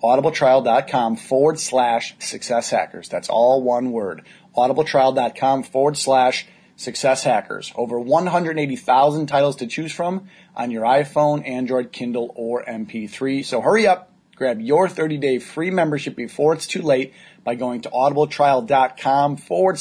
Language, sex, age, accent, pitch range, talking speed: English, male, 30-49, American, 130-165 Hz, 125 wpm